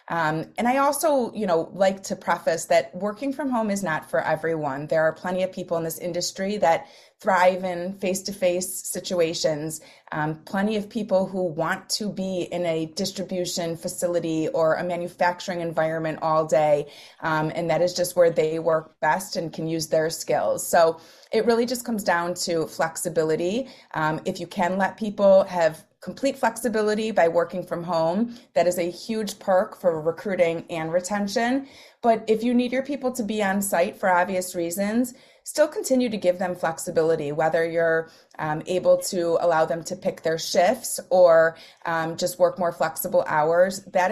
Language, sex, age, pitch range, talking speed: English, female, 30-49, 165-195 Hz, 175 wpm